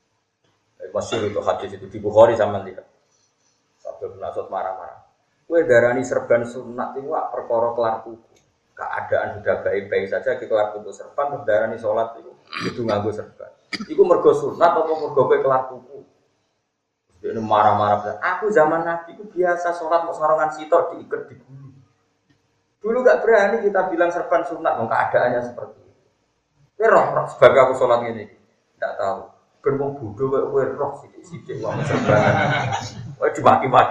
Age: 30-49